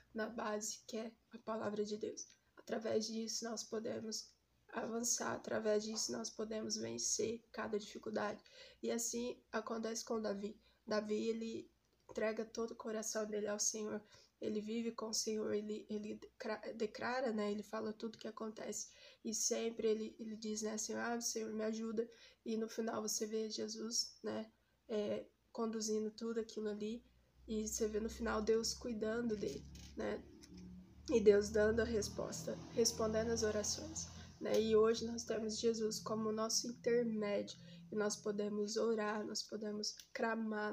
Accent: Brazilian